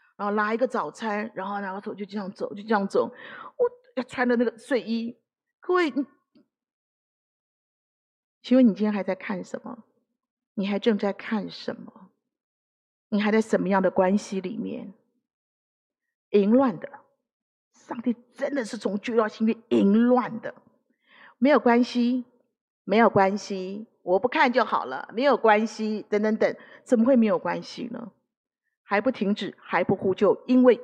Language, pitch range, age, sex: Chinese, 210-275 Hz, 40-59, female